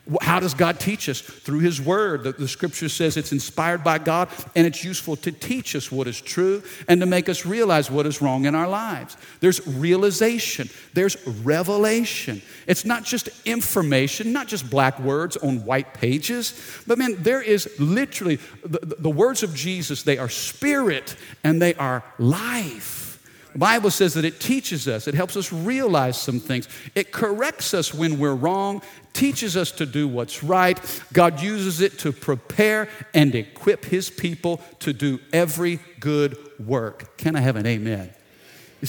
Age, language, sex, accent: 50-69, English, male, American